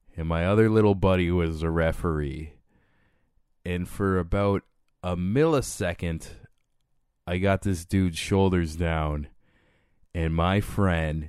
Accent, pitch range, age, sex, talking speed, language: American, 85-100 Hz, 20-39, male, 115 wpm, English